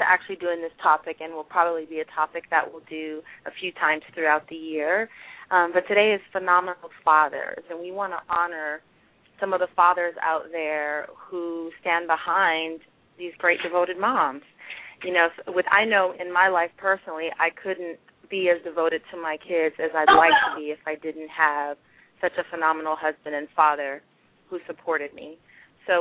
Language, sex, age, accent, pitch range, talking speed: English, female, 30-49, American, 165-200 Hz, 180 wpm